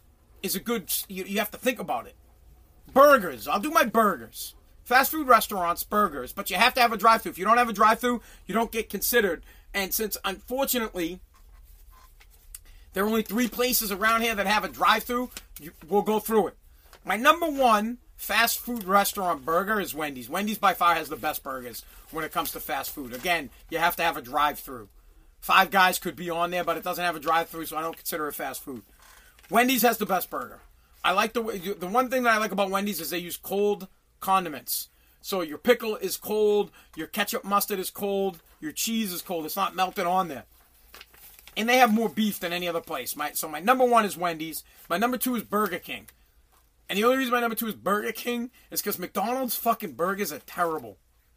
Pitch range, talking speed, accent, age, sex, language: 170-230 Hz, 210 wpm, American, 40-59, male, English